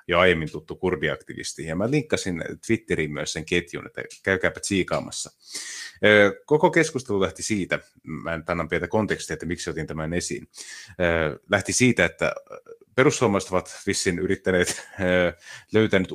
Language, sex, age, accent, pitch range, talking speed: Finnish, male, 30-49, native, 85-100 Hz, 135 wpm